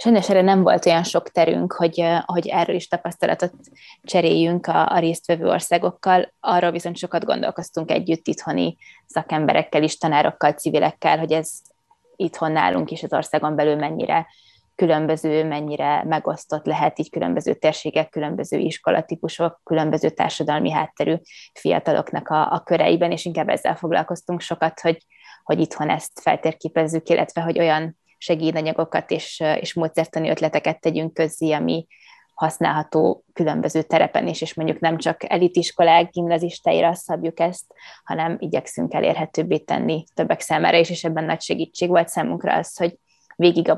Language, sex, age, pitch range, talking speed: Hungarian, female, 20-39, 160-170 Hz, 140 wpm